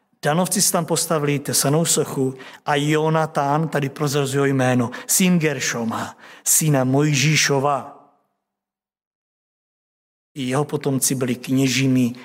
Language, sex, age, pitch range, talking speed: Czech, male, 60-79, 130-160 Hz, 100 wpm